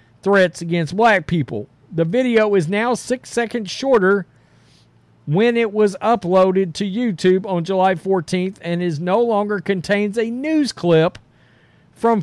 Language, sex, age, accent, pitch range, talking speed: English, male, 50-69, American, 165-220 Hz, 140 wpm